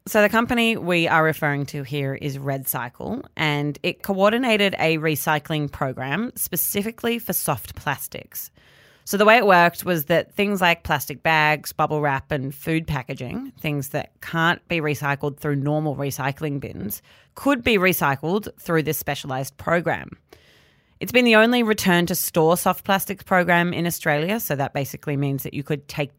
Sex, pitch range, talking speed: female, 145-195 Hz, 160 wpm